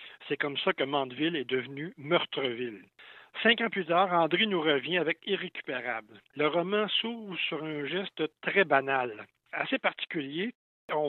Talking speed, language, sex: 150 wpm, French, male